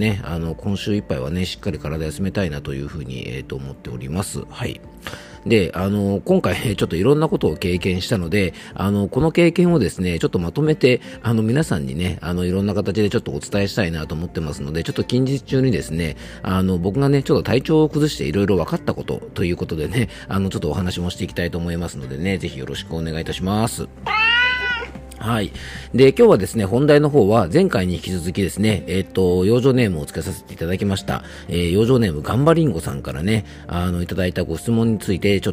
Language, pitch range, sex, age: Japanese, 85-120 Hz, male, 40-59